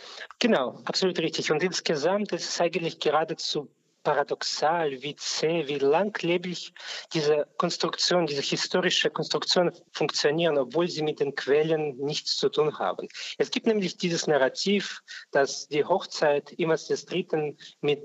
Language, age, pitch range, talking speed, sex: German, 40-59, 145-190 Hz, 135 wpm, male